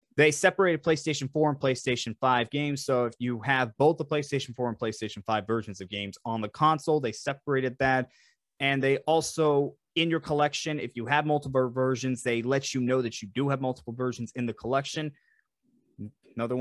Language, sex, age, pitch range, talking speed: English, male, 20-39, 125-160 Hz, 190 wpm